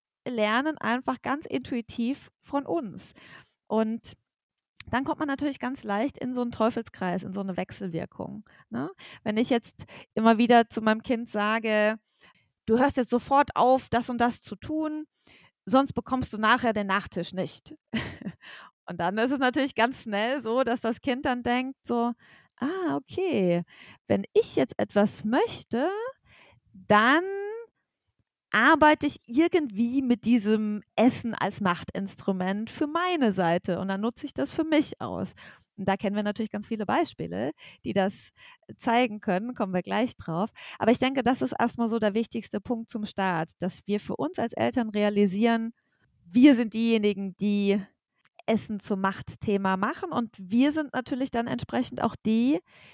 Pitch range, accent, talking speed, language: 205-260 Hz, German, 160 wpm, German